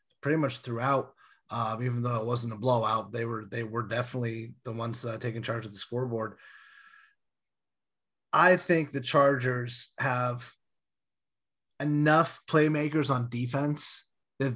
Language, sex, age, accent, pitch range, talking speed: English, male, 30-49, American, 120-135 Hz, 135 wpm